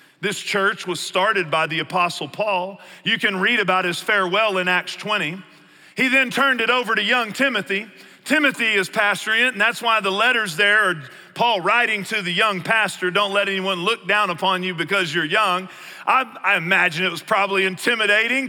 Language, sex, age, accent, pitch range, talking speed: English, male, 40-59, American, 175-225 Hz, 190 wpm